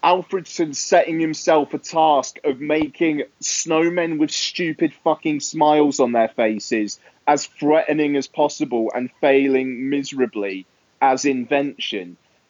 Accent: British